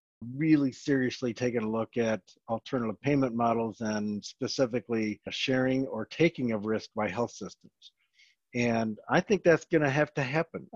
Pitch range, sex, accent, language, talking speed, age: 115-140 Hz, male, American, English, 155 wpm, 50-69